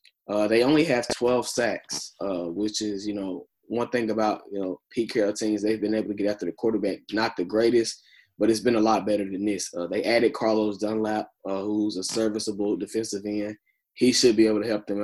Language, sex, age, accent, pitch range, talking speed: English, male, 20-39, American, 100-110 Hz, 230 wpm